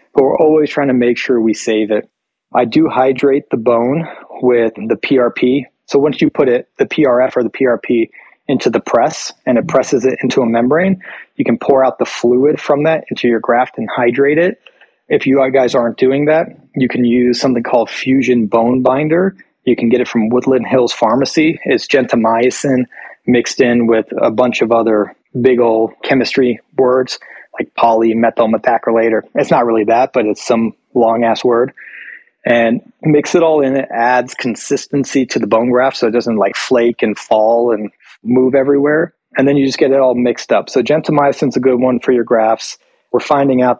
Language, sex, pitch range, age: English, male, 115-135 Hz, 30-49